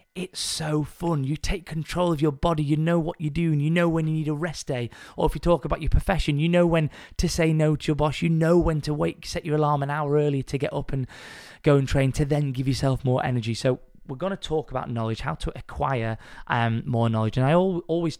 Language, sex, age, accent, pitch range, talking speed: English, male, 20-39, British, 120-155 Hz, 260 wpm